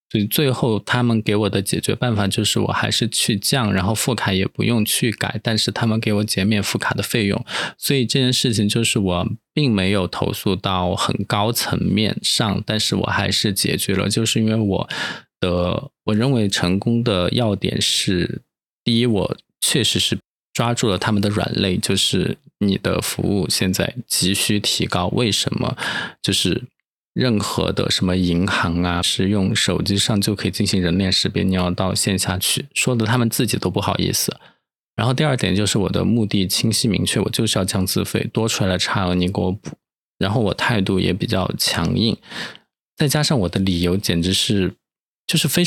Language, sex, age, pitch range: Chinese, male, 20-39, 95-115 Hz